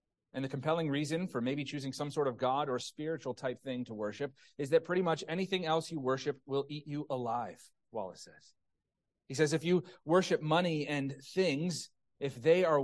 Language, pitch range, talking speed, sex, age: English, 125-150 Hz, 195 wpm, male, 30-49